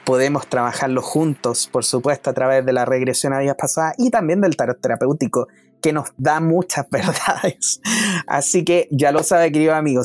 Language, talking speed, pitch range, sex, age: Spanish, 180 wpm, 130-180 Hz, male, 20-39